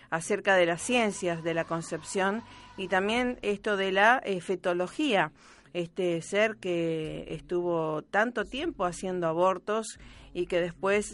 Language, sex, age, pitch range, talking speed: Spanish, female, 40-59, 180-225 Hz, 135 wpm